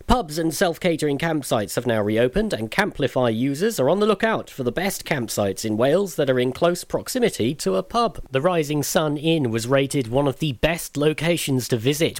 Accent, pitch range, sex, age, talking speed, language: British, 125-170 Hz, male, 40-59, 200 wpm, English